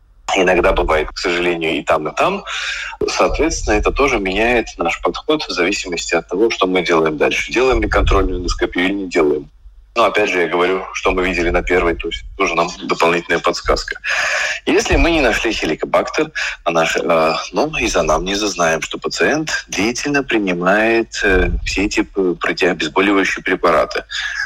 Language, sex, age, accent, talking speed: Russian, male, 20-39, native, 155 wpm